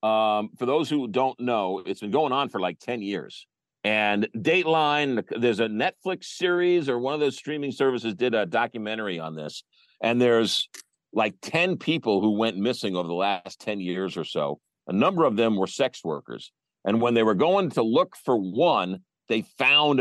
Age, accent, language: 50-69, American, English